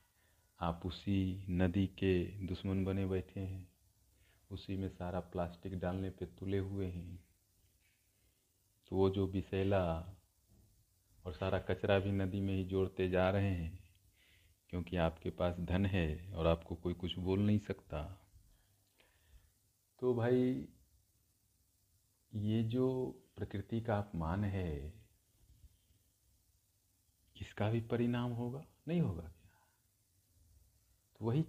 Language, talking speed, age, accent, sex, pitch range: Hindi, 110 wpm, 50-69, native, male, 95-120 Hz